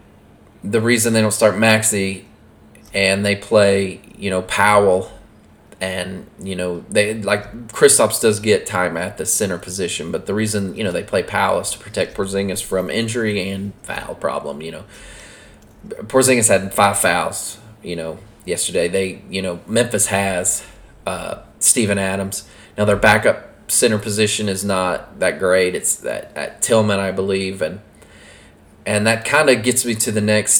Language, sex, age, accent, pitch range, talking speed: English, male, 20-39, American, 95-110 Hz, 165 wpm